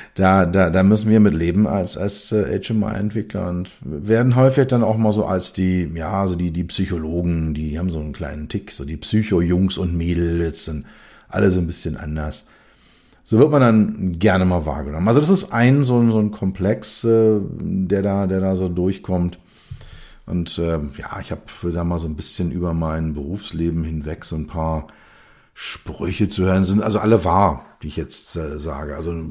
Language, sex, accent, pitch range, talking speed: German, male, German, 85-105 Hz, 190 wpm